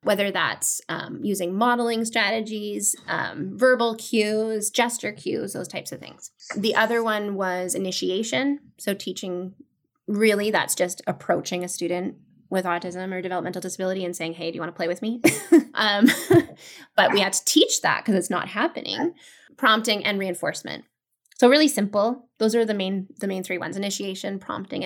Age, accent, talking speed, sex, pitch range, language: 20-39, American, 170 wpm, female, 185-235 Hz, English